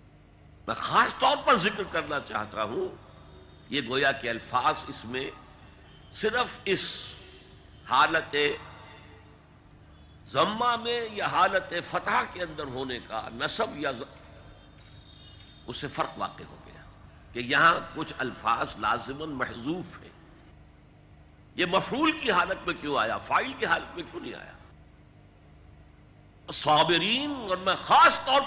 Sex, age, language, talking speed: male, 60-79, Urdu, 130 wpm